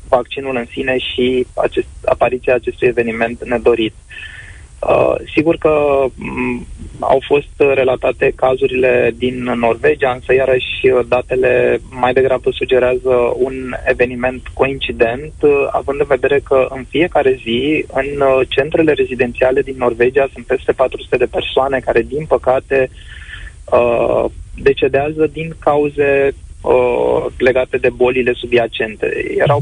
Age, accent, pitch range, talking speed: 20-39, native, 120-140 Hz, 105 wpm